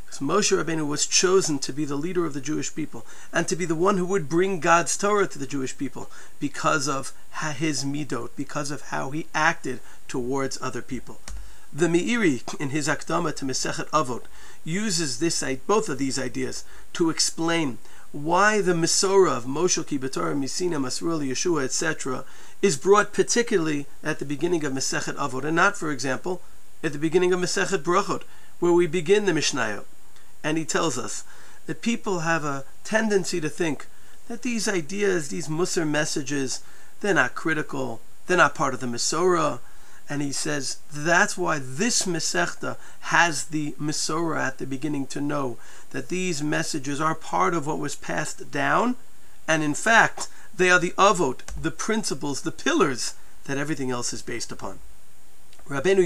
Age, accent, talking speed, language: 40-59, American, 170 wpm, English